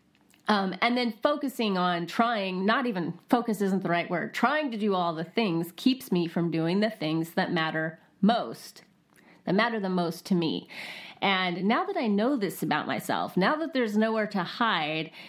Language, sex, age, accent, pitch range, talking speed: English, female, 30-49, American, 185-280 Hz, 190 wpm